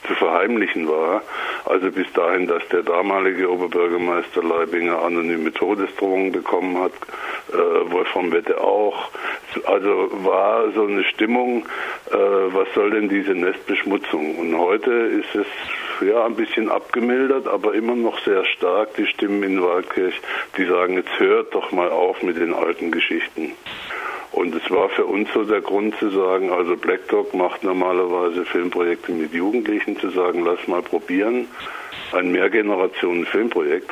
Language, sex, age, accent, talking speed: German, male, 60-79, German, 145 wpm